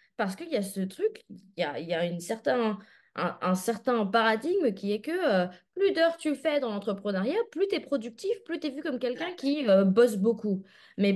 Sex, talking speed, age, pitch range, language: female, 230 wpm, 20-39, 175-235 Hz, French